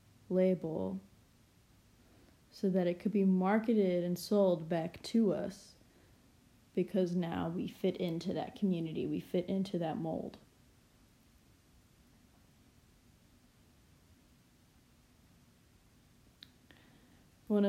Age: 20-39